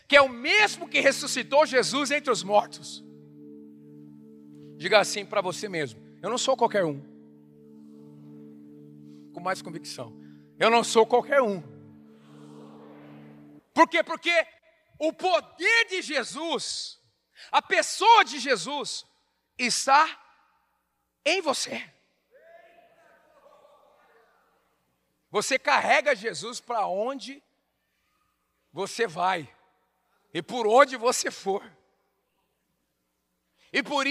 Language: Portuguese